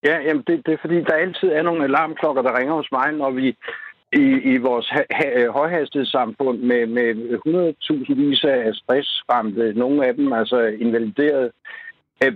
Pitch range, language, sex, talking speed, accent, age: 130-175 Hz, Danish, male, 170 wpm, native, 60-79